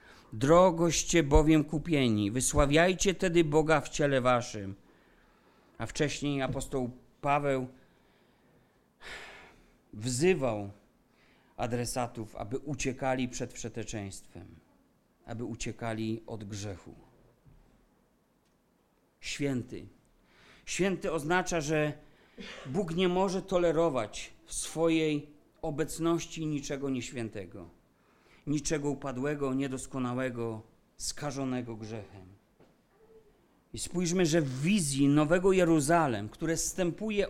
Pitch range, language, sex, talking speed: 125-170 Hz, Polish, male, 80 wpm